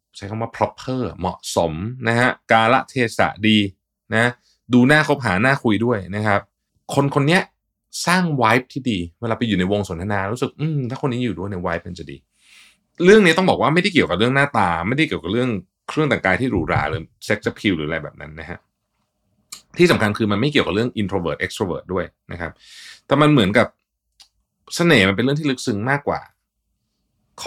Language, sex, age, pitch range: Thai, male, 20-39, 95-130 Hz